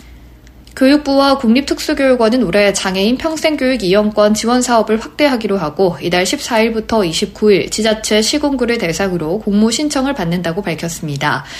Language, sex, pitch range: Korean, female, 180-260 Hz